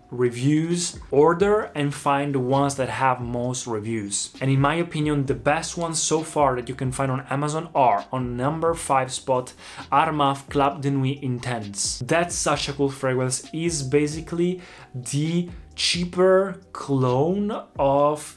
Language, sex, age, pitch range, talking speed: Italian, male, 20-39, 125-155 Hz, 150 wpm